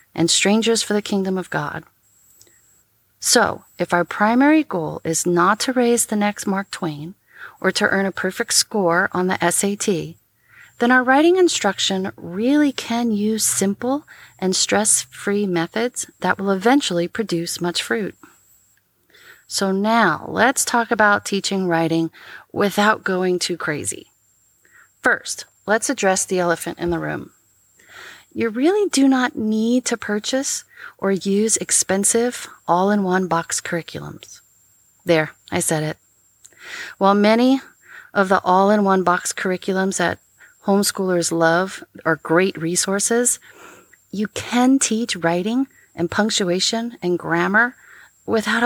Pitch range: 175-230 Hz